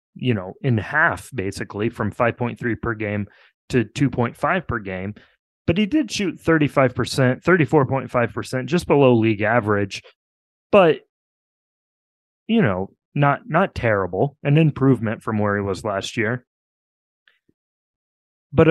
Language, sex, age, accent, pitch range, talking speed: English, male, 30-49, American, 105-140 Hz, 120 wpm